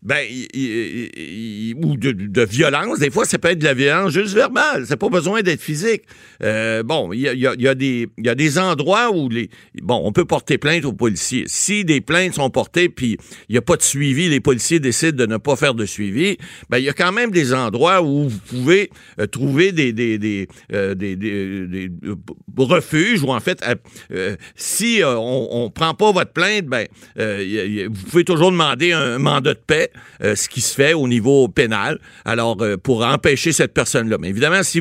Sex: male